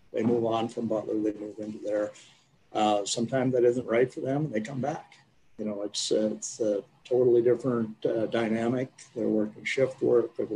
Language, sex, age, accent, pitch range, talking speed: English, male, 50-69, American, 110-125 Hz, 195 wpm